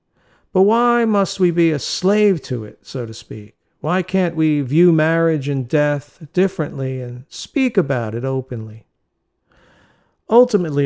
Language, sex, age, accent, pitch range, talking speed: English, male, 50-69, American, 130-175 Hz, 145 wpm